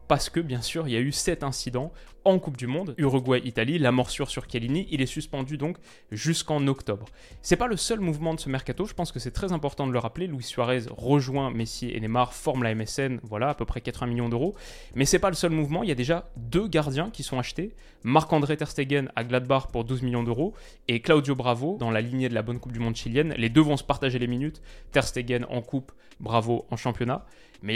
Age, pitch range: 20-39, 120-150 Hz